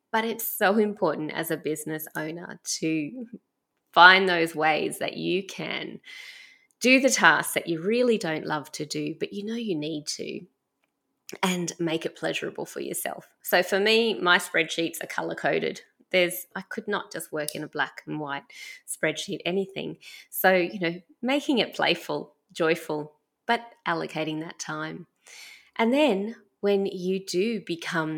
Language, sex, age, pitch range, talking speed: English, female, 20-39, 155-200 Hz, 160 wpm